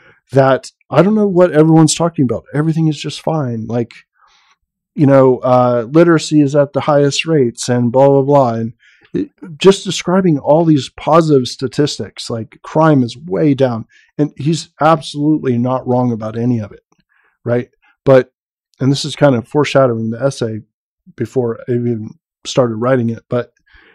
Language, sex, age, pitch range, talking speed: English, male, 40-59, 125-160 Hz, 160 wpm